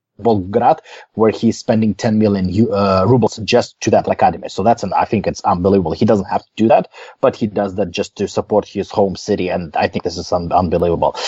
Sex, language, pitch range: male, English, 110-130 Hz